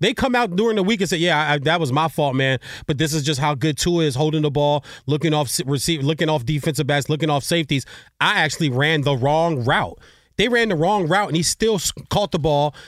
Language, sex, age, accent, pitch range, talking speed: English, male, 30-49, American, 155-230 Hz, 245 wpm